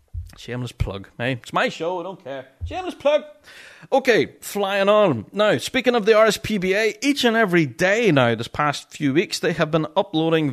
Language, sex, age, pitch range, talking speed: English, male, 30-49, 140-205 Hz, 180 wpm